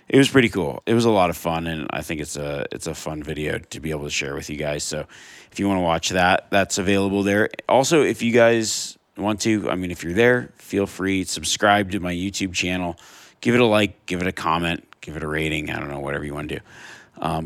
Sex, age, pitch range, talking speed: male, 30-49, 80-100 Hz, 260 wpm